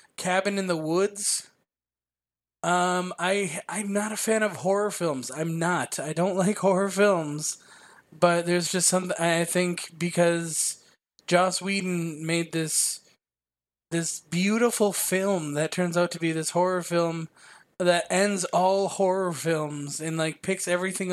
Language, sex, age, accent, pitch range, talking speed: English, male, 20-39, American, 165-185 Hz, 145 wpm